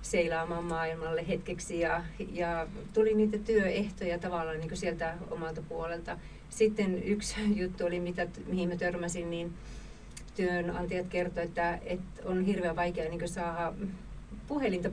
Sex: female